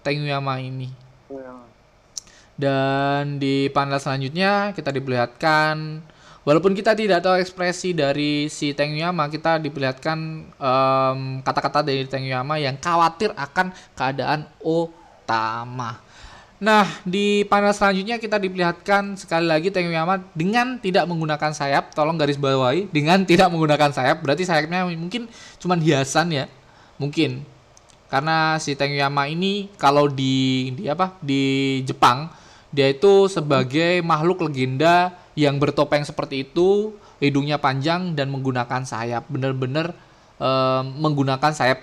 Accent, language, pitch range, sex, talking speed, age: native, Indonesian, 135-175 Hz, male, 120 wpm, 20-39